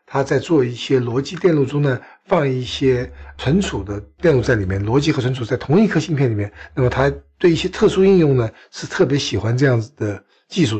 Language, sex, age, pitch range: Chinese, male, 60-79, 110-150 Hz